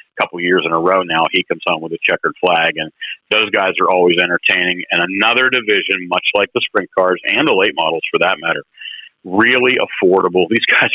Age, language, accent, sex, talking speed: 50-69, English, American, male, 215 wpm